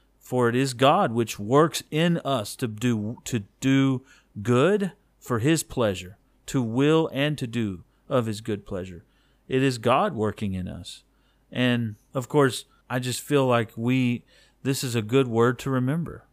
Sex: male